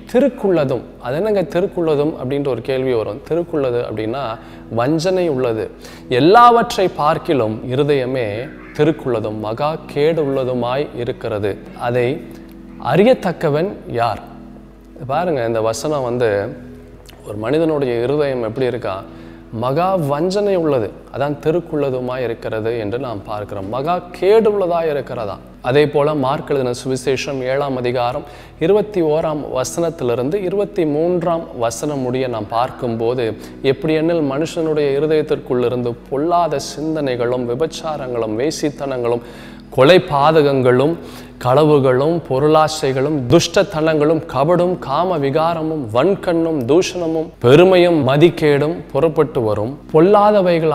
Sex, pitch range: male, 120-160 Hz